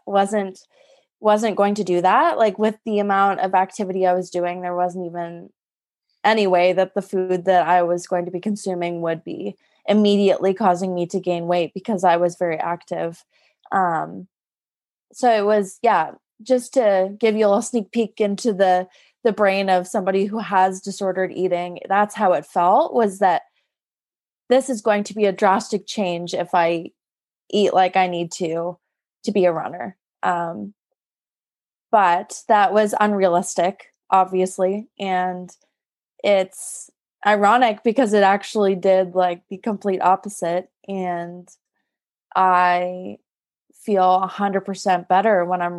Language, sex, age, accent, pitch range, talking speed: English, female, 20-39, American, 180-210 Hz, 155 wpm